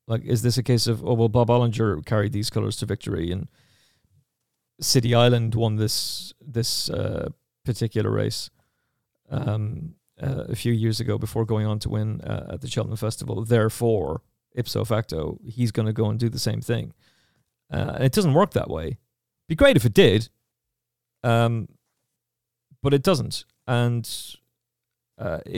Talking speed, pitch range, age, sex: 165 wpm, 110-125 Hz, 40-59, male